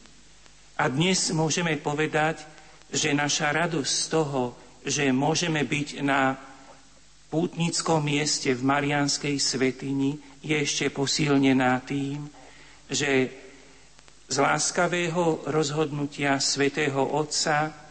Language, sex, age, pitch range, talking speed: Slovak, male, 50-69, 135-155 Hz, 95 wpm